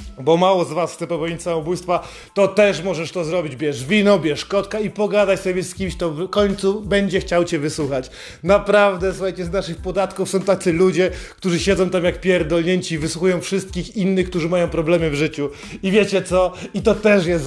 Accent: native